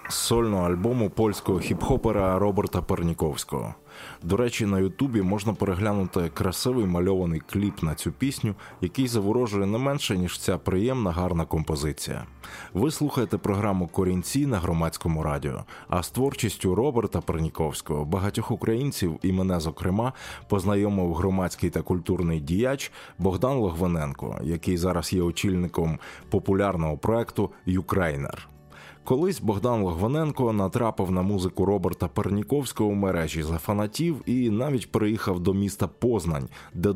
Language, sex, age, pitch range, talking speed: Ukrainian, male, 20-39, 85-110 Hz, 125 wpm